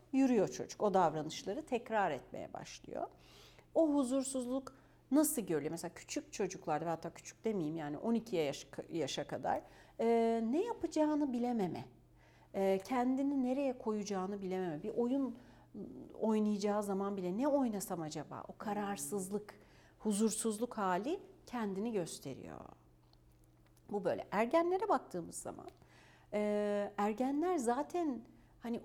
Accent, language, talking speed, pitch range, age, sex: native, Turkish, 110 wpm, 180-250 Hz, 60-79, female